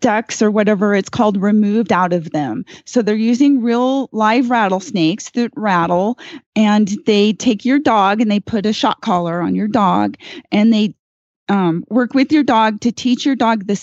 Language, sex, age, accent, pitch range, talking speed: English, female, 30-49, American, 195-245 Hz, 185 wpm